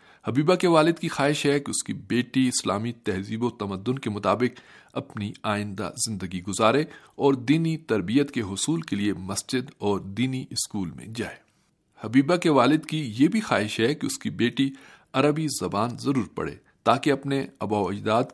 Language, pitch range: Urdu, 110-140 Hz